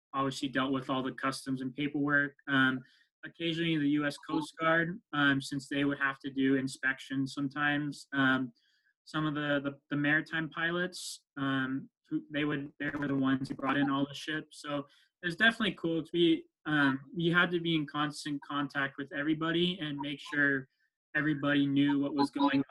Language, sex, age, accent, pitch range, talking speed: English, male, 20-39, American, 140-160 Hz, 180 wpm